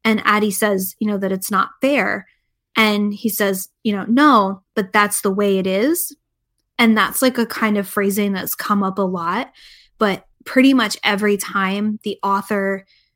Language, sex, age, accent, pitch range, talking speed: English, female, 10-29, American, 195-220 Hz, 185 wpm